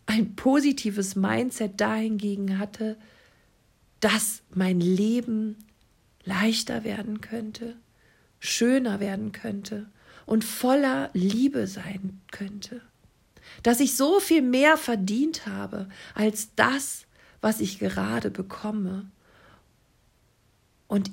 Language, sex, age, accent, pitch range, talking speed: German, female, 40-59, German, 195-225 Hz, 95 wpm